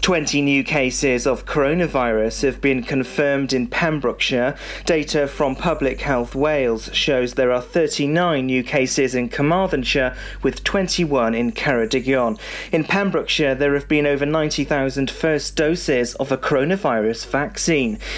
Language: English